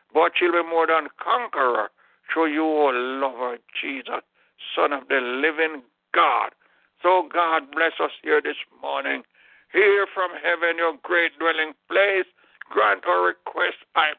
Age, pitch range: 60-79, 165-190 Hz